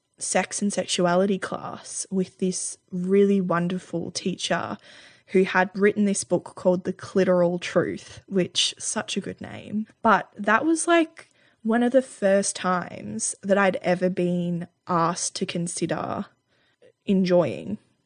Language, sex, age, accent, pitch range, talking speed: English, female, 20-39, Australian, 175-195 Hz, 135 wpm